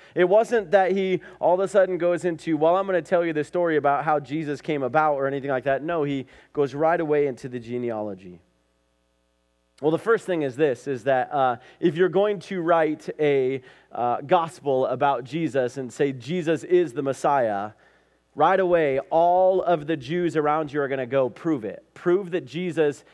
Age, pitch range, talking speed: 30-49, 130-175 Hz, 200 wpm